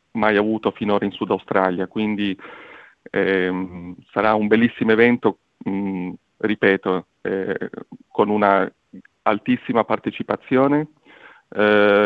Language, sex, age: Italian, male, 40-59